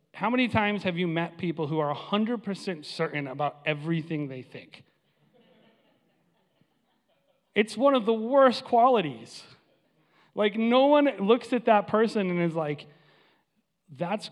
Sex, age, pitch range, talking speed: male, 30-49, 150-210 Hz, 135 wpm